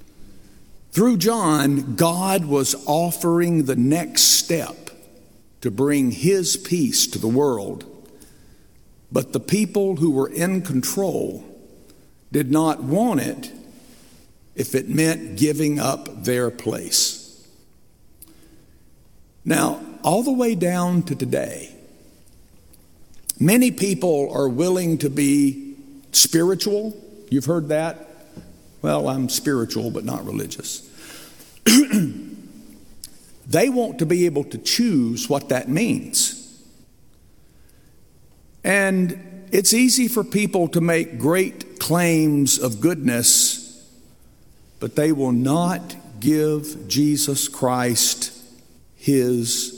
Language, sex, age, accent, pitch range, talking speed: English, male, 60-79, American, 130-185 Hz, 100 wpm